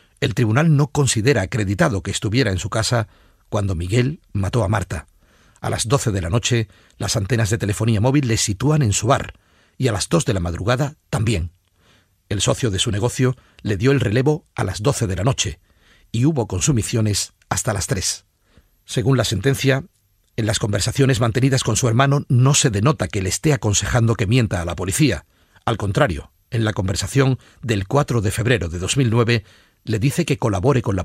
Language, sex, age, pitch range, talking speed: Spanish, male, 40-59, 100-130 Hz, 190 wpm